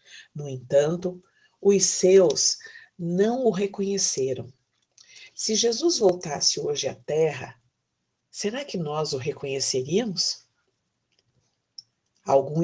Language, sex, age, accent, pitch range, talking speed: Portuguese, female, 50-69, Brazilian, 145-205 Hz, 90 wpm